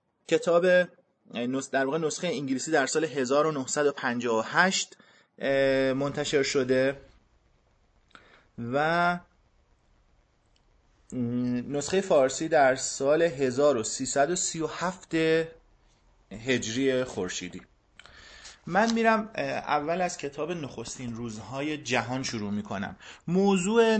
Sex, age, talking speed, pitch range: male, 30-49, 75 wpm, 120-160 Hz